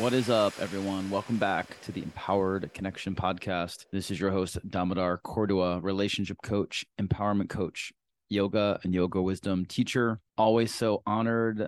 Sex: male